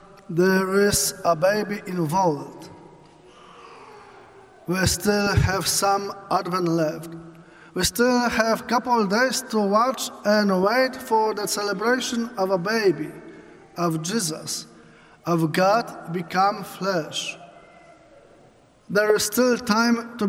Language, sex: English, male